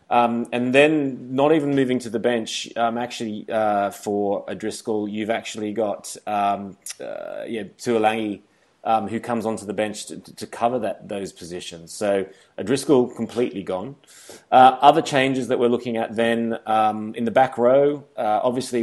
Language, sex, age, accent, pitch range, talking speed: English, male, 30-49, Australian, 105-120 Hz, 175 wpm